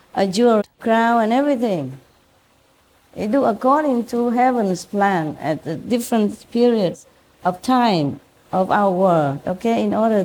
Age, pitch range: 50-69, 160-230 Hz